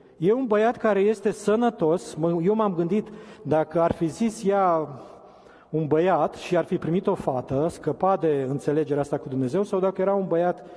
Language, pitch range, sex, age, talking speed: Romanian, 155-205 Hz, male, 40-59, 185 wpm